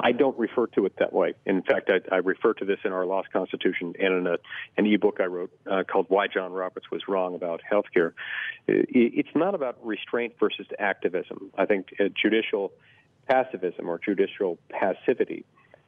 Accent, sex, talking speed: American, male, 175 wpm